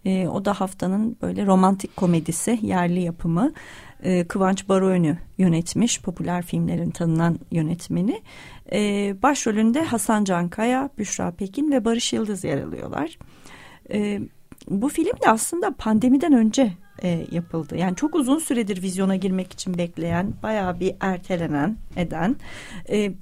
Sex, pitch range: female, 180-245 Hz